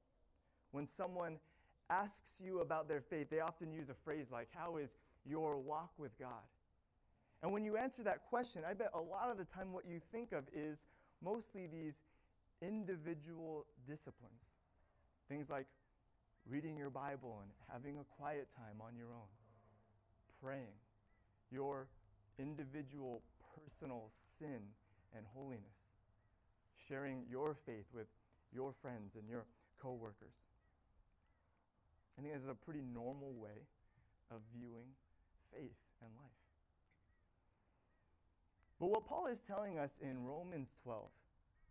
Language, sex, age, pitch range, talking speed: English, male, 30-49, 105-160 Hz, 130 wpm